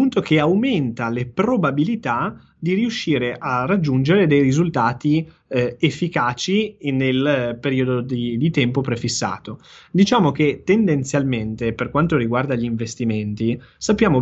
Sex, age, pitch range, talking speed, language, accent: male, 20-39, 120-155 Hz, 120 wpm, Italian, native